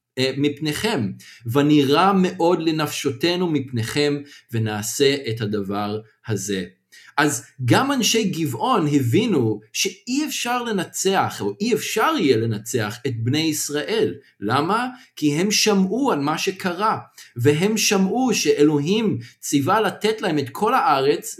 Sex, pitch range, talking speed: male, 130-190 Hz, 115 wpm